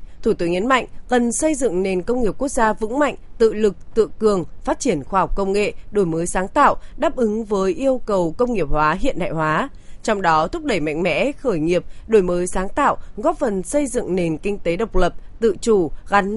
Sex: female